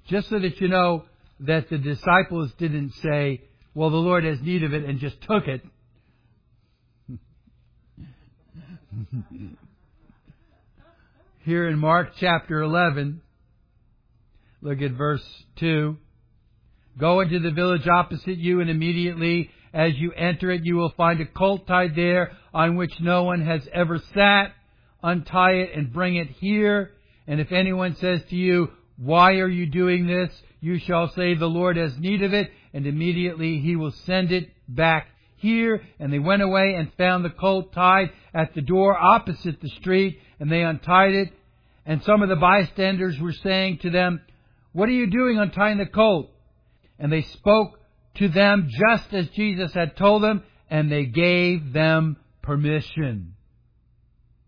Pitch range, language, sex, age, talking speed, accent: 150-185 Hz, English, male, 60-79, 155 wpm, American